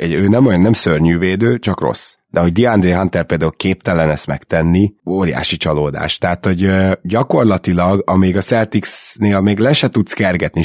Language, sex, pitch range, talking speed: Hungarian, male, 85-105 Hz, 170 wpm